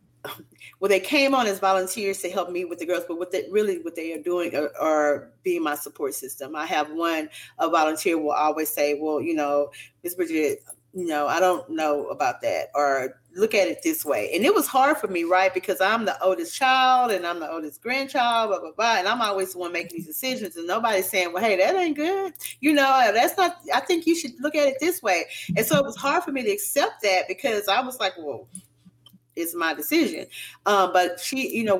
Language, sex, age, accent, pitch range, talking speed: English, female, 30-49, American, 170-250 Hz, 230 wpm